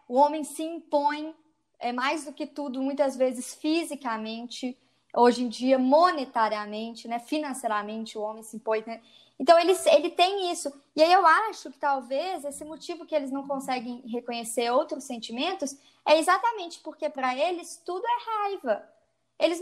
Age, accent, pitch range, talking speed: 20-39, Brazilian, 240-330 Hz, 155 wpm